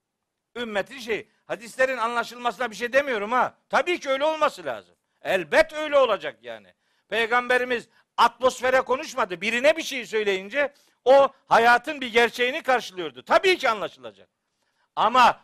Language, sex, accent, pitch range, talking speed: Turkish, male, native, 205-285 Hz, 130 wpm